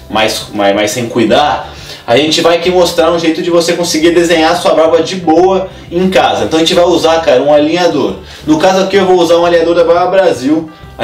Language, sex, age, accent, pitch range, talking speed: Portuguese, male, 20-39, Brazilian, 135-180 Hz, 215 wpm